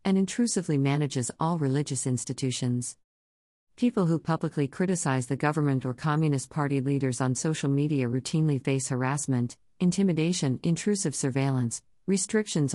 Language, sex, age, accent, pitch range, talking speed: English, female, 50-69, American, 130-170 Hz, 120 wpm